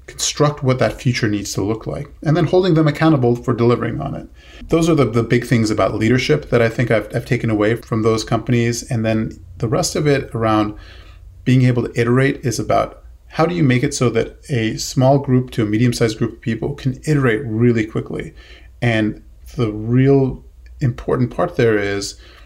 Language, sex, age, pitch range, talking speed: English, male, 30-49, 110-130 Hz, 200 wpm